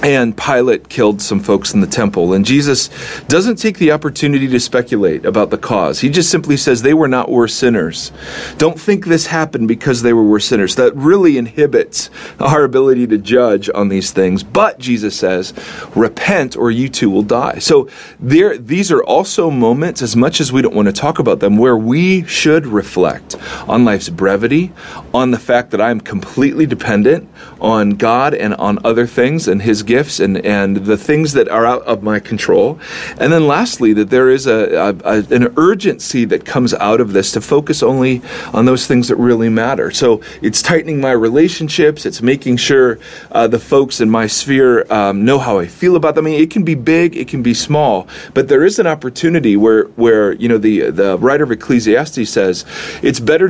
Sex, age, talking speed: male, 40-59, 200 wpm